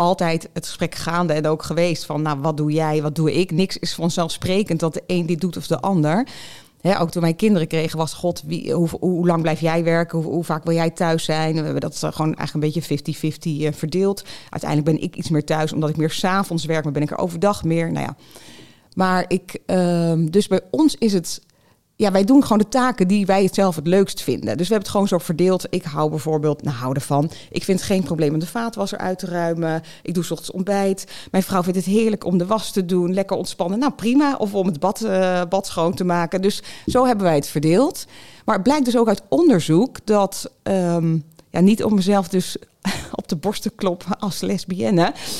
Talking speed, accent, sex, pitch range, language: 230 wpm, Dutch, female, 160-195 Hz, Dutch